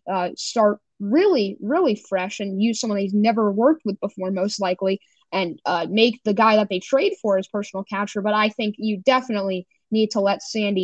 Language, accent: English, American